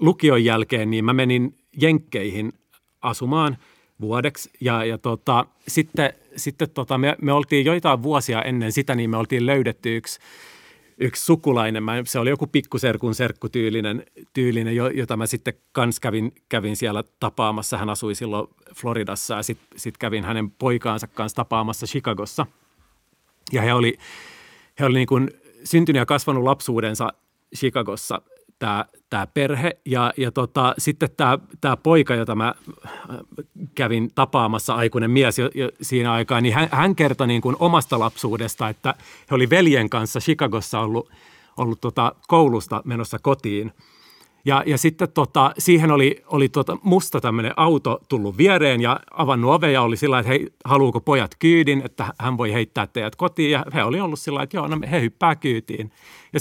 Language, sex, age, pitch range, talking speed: Finnish, male, 40-59, 115-150 Hz, 155 wpm